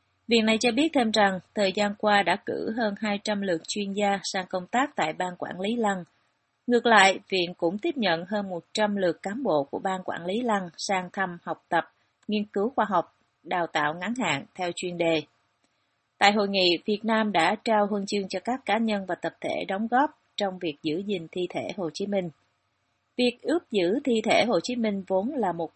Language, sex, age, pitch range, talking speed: Vietnamese, female, 30-49, 175-215 Hz, 215 wpm